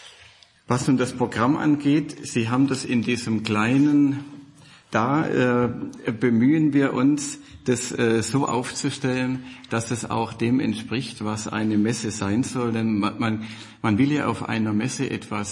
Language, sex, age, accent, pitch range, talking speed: German, male, 50-69, German, 105-125 Hz, 150 wpm